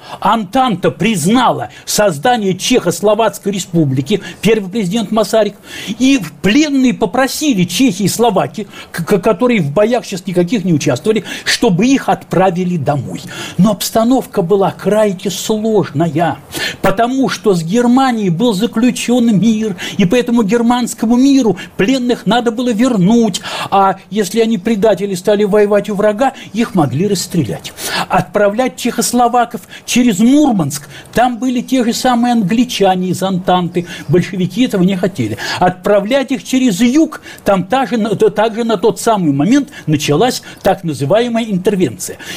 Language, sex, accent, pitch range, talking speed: Russian, male, native, 185-245 Hz, 125 wpm